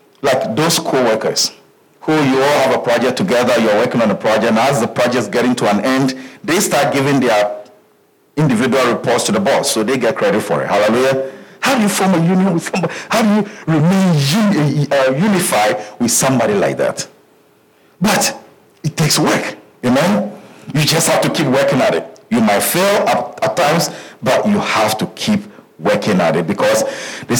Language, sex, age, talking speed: English, male, 50-69, 195 wpm